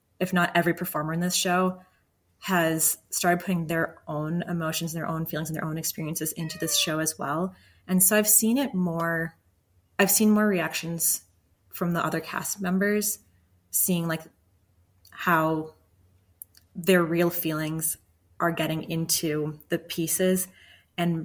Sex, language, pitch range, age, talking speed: female, English, 155-185 Hz, 20-39, 150 wpm